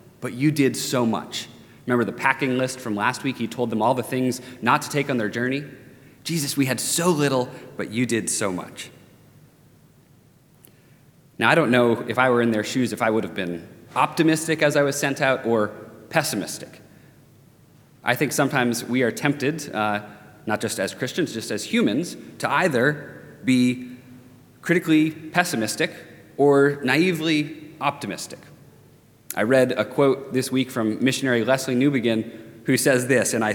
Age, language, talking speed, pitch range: 30-49, English, 170 wpm, 115-145 Hz